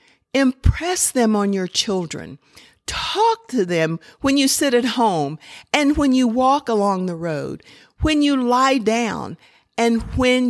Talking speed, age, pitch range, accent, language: 150 wpm, 50-69, 195-250 Hz, American, English